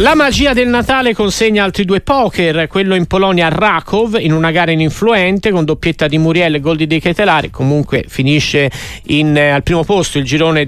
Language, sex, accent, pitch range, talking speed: Italian, male, native, 145-185 Hz, 195 wpm